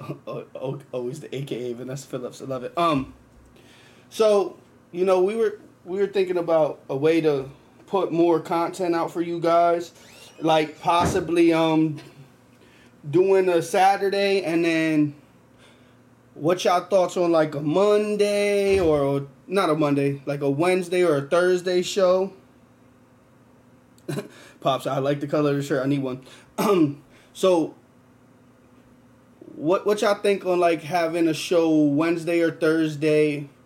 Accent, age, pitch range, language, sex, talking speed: American, 20-39, 140-180 Hz, English, male, 150 wpm